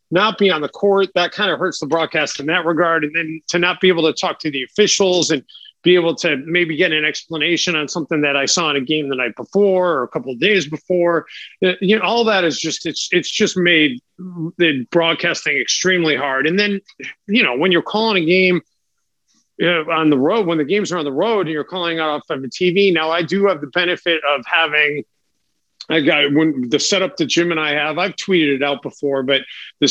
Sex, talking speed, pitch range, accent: male, 235 wpm, 150-180 Hz, American